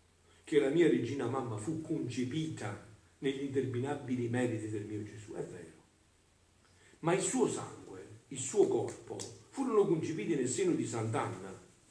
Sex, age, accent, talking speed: male, 50-69, native, 140 wpm